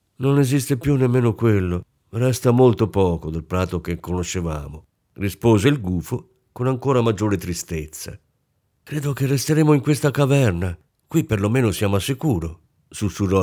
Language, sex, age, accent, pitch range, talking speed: Italian, male, 50-69, native, 95-130 Hz, 140 wpm